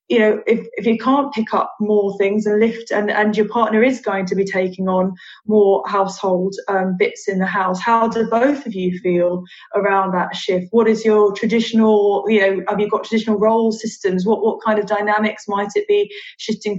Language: English